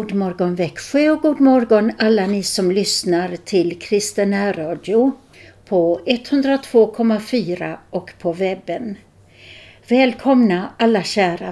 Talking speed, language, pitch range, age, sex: 110 wpm, Swedish, 165-230 Hz, 60-79, female